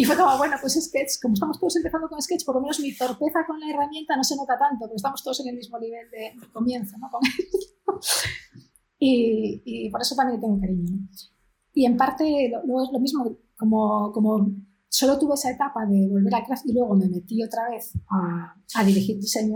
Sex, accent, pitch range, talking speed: female, Spanish, 205-255 Hz, 215 wpm